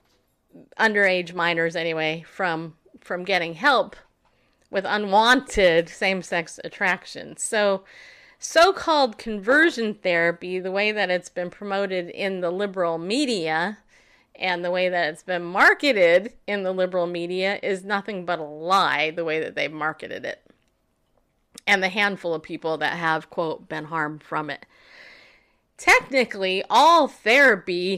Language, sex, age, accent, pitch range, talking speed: English, female, 30-49, American, 185-300 Hz, 135 wpm